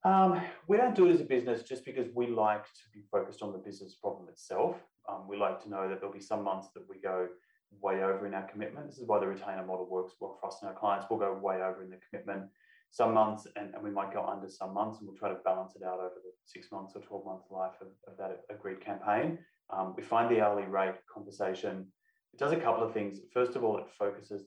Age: 30-49